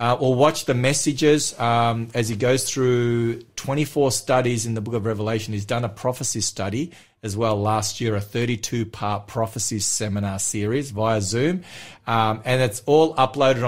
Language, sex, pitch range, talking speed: English, male, 110-140 Hz, 170 wpm